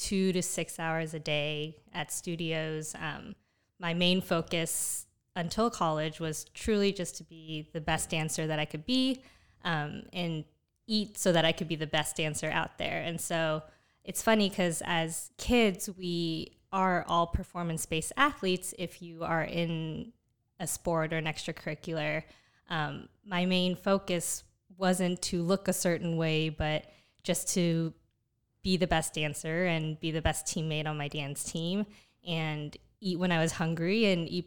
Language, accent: English, American